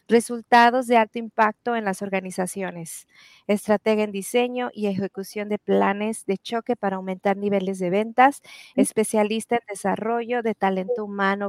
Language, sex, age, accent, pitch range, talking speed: English, female, 30-49, Mexican, 205-235 Hz, 140 wpm